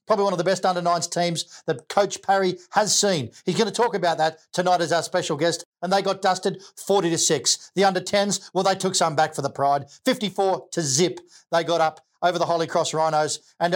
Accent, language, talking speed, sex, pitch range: Australian, English, 225 wpm, male, 155-185 Hz